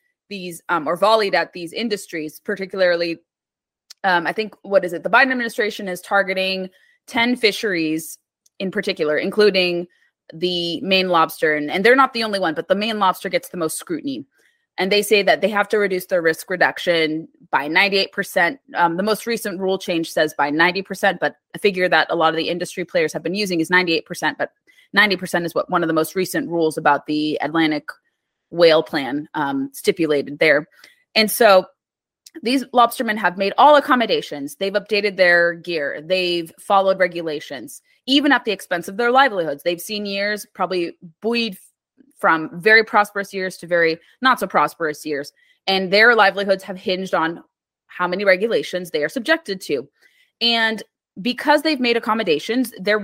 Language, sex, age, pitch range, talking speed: English, female, 20-39, 170-220 Hz, 175 wpm